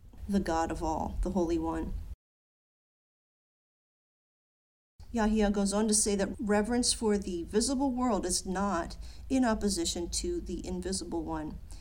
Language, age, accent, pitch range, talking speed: English, 50-69, American, 160-215 Hz, 130 wpm